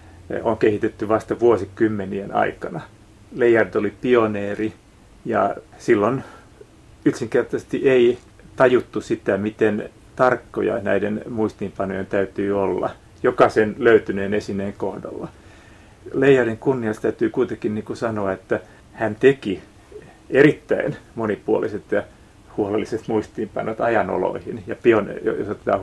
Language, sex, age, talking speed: Finnish, male, 40-59, 100 wpm